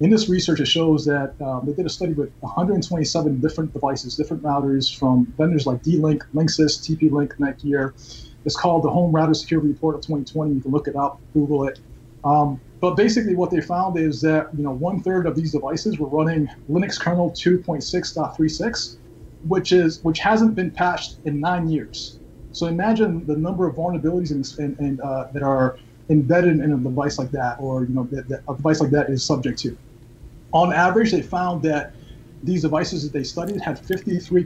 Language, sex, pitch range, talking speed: English, male, 140-170 Hz, 190 wpm